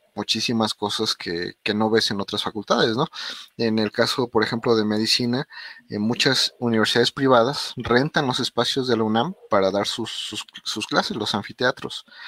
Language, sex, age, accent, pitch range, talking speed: Spanish, male, 30-49, Mexican, 105-125 Hz, 175 wpm